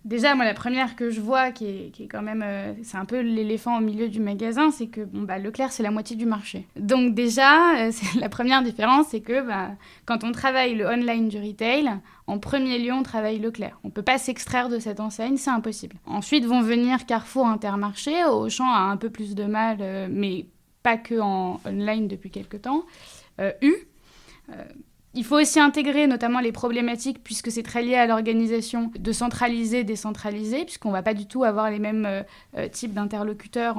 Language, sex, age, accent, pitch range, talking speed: French, female, 20-39, French, 215-255 Hz, 210 wpm